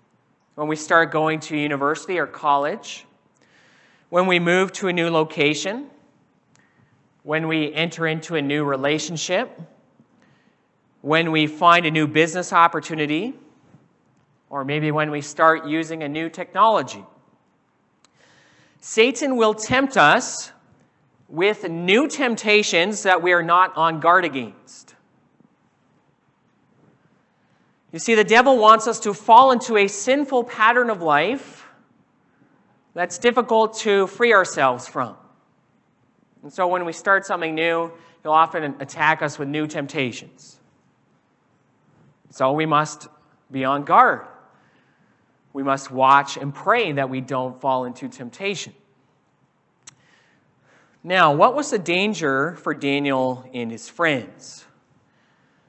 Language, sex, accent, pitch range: English, male, American, 150-195 Hz